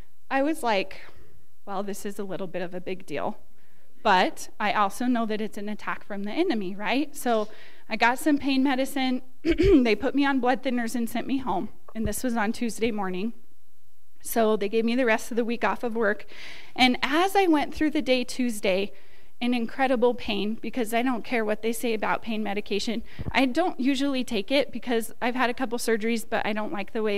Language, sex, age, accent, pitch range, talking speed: English, female, 20-39, American, 210-255 Hz, 215 wpm